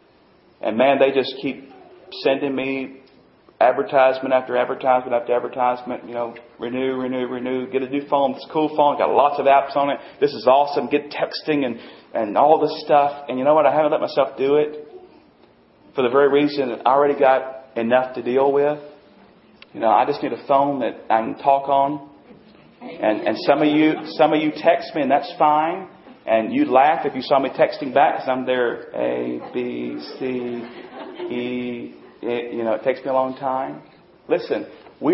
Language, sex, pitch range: English, male, 125-150 Hz